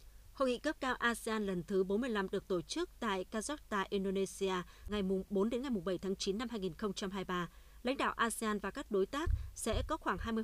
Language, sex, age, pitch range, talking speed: Vietnamese, female, 20-39, 190-240 Hz, 195 wpm